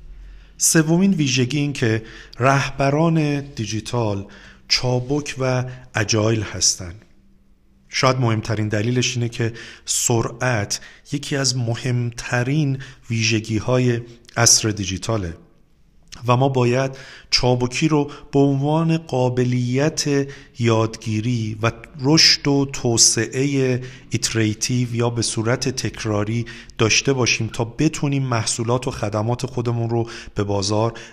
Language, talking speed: Persian, 100 wpm